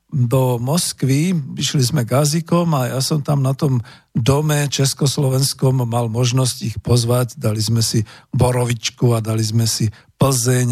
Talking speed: 145 wpm